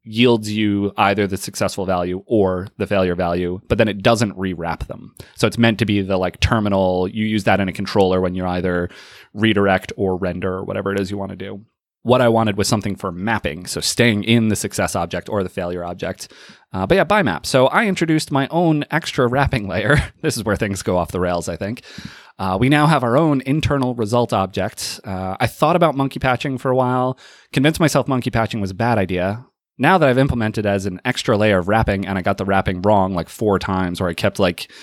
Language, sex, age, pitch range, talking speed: English, male, 30-49, 95-120 Hz, 230 wpm